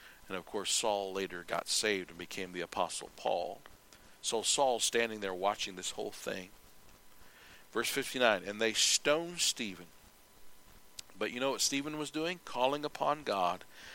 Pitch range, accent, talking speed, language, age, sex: 100-130 Hz, American, 155 wpm, English, 50-69, male